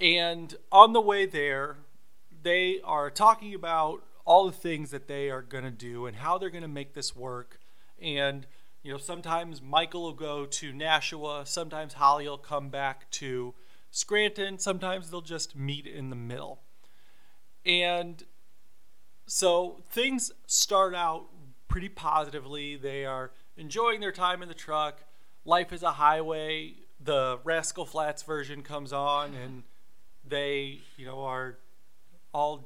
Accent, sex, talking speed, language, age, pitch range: American, male, 145 wpm, English, 30-49, 140-175 Hz